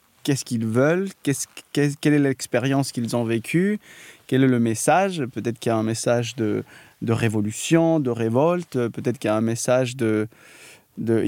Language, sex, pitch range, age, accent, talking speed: French, male, 120-145 Hz, 20-39, French, 180 wpm